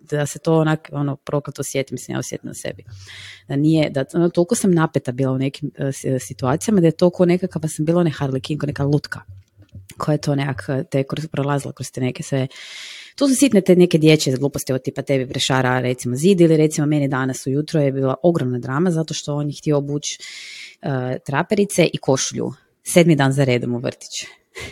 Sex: female